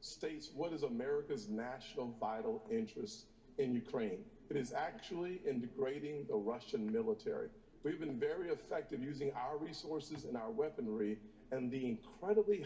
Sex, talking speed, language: male, 140 wpm, English